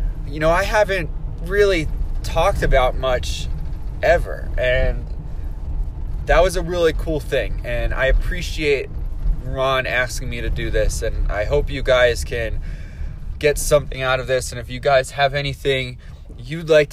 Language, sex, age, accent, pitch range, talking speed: English, male, 20-39, American, 95-145 Hz, 155 wpm